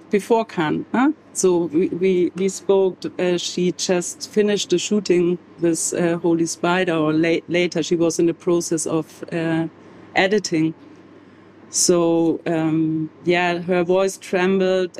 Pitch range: 165-195 Hz